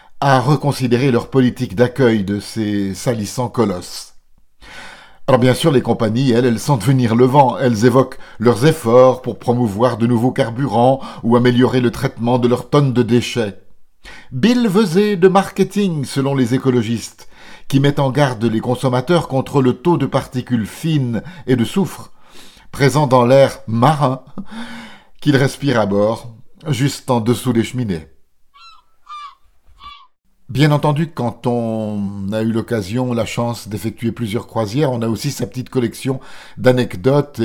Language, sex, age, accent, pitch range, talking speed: French, male, 50-69, French, 115-145 Hz, 145 wpm